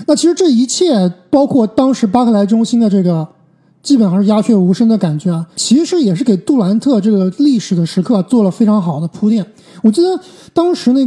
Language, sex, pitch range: Chinese, male, 185-245 Hz